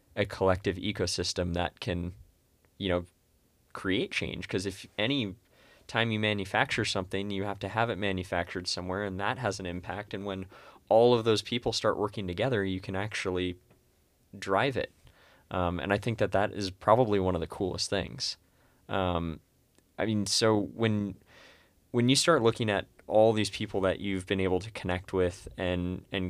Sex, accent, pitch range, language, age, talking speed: male, American, 90-110 Hz, English, 20-39, 175 wpm